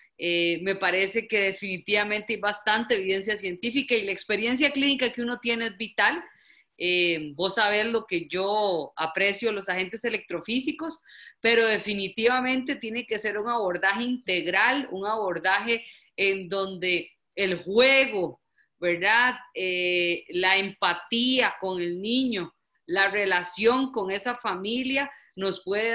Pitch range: 185-235 Hz